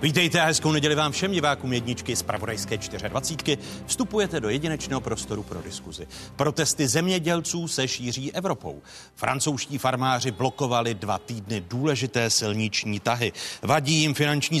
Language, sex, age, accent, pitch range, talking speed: Czech, male, 40-59, native, 115-150 Hz, 135 wpm